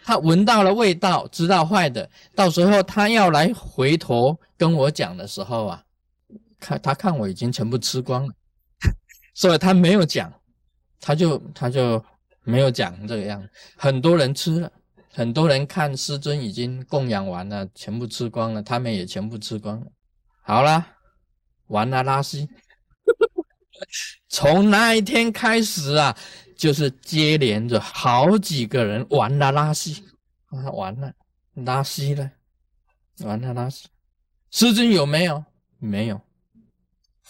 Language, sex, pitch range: Chinese, male, 115-190 Hz